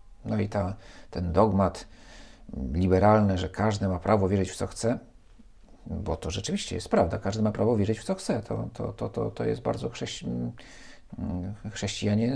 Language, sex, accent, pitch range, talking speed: Polish, male, native, 95-115 Hz, 170 wpm